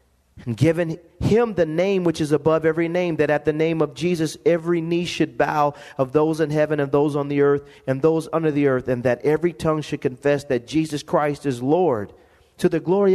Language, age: English, 40-59